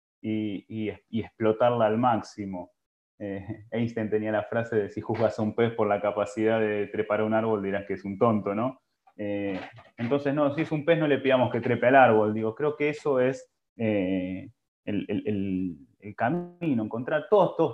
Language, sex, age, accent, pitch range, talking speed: Spanish, male, 20-39, Argentinian, 105-125 Hz, 190 wpm